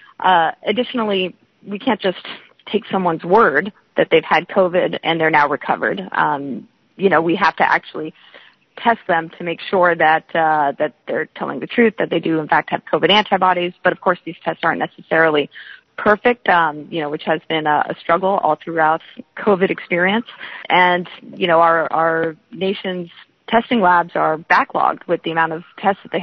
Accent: American